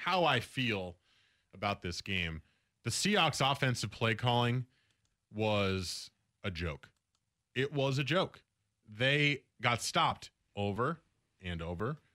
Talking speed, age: 120 wpm, 30-49